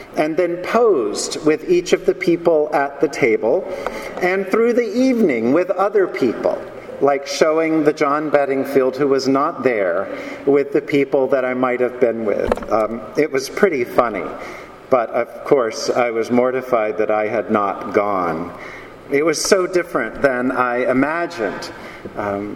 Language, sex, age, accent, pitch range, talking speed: English, male, 50-69, American, 135-180 Hz, 155 wpm